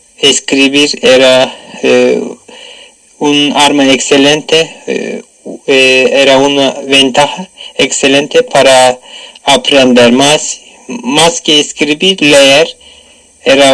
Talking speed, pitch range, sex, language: 85 wpm, 140-165 Hz, male, Spanish